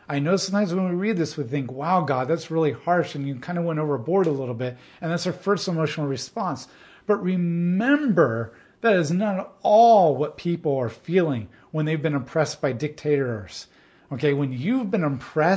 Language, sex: English, male